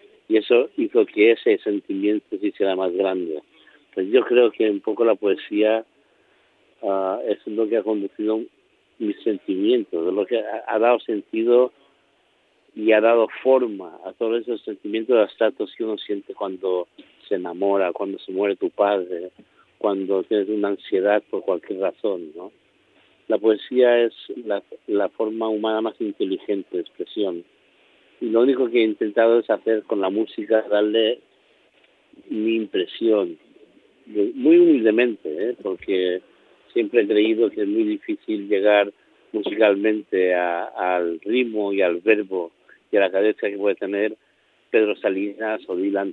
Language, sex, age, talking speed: Spanish, male, 50-69, 150 wpm